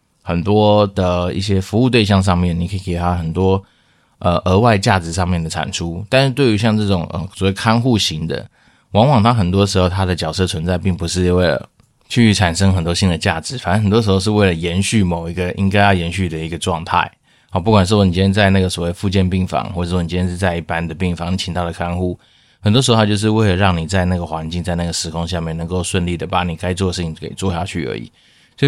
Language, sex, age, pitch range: Chinese, male, 20-39, 85-105 Hz